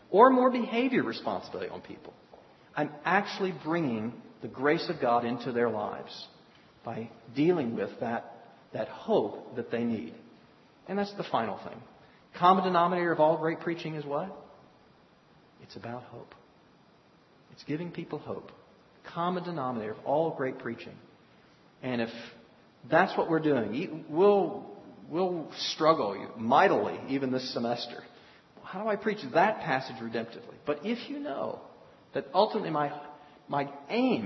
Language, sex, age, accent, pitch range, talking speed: English, male, 40-59, American, 115-165 Hz, 140 wpm